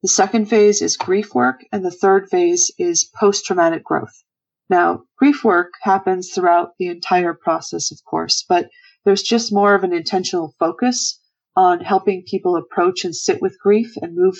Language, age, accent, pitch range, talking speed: English, 40-59, American, 180-240 Hz, 170 wpm